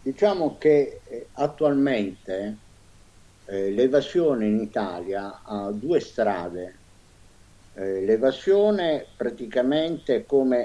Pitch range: 100-140 Hz